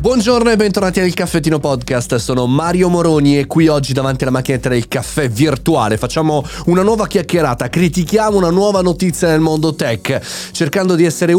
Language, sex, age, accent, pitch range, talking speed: Italian, male, 30-49, native, 115-155 Hz, 170 wpm